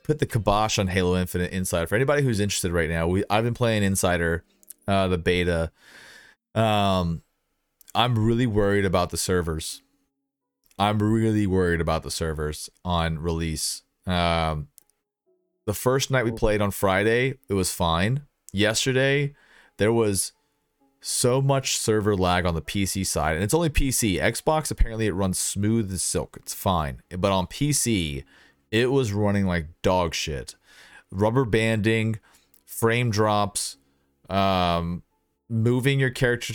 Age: 30-49